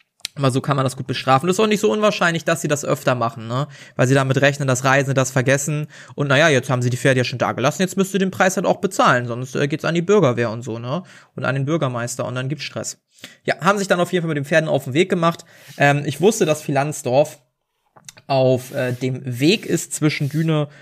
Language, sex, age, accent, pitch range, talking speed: German, male, 20-39, German, 130-155 Hz, 260 wpm